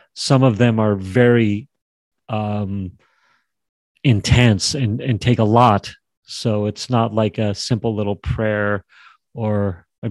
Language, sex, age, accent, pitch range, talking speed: English, male, 40-59, American, 105-120 Hz, 130 wpm